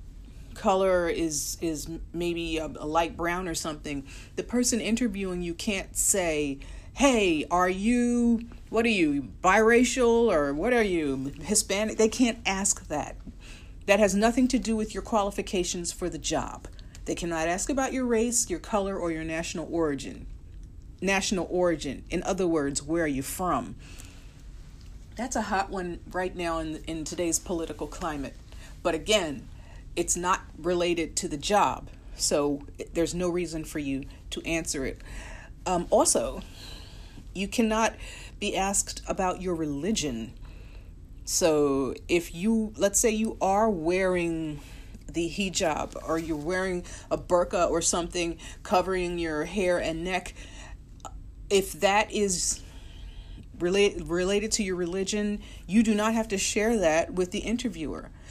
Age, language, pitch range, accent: 40-59, English, 155-205 Hz, American